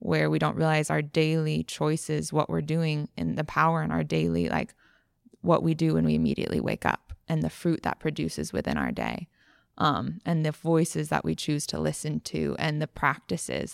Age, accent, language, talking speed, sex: 20-39, American, English, 200 wpm, female